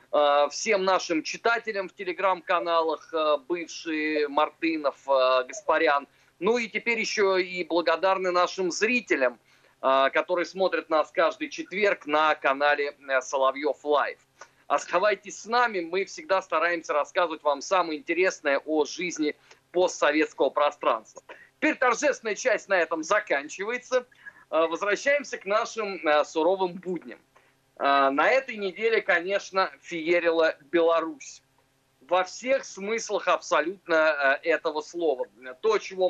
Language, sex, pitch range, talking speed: Russian, male, 155-205 Hz, 105 wpm